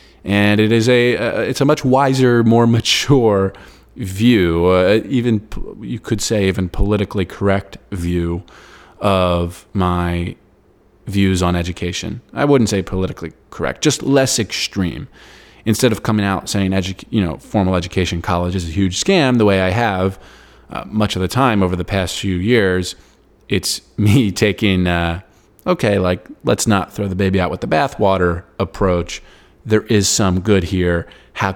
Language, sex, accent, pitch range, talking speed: English, male, American, 90-110 Hz, 165 wpm